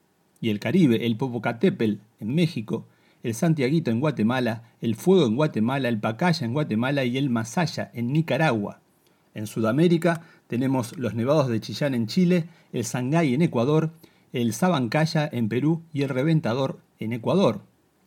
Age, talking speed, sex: 40-59, 155 wpm, male